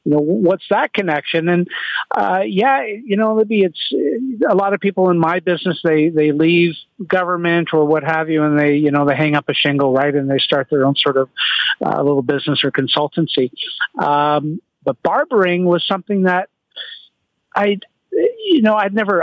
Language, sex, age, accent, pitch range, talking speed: English, male, 50-69, American, 150-185 Hz, 195 wpm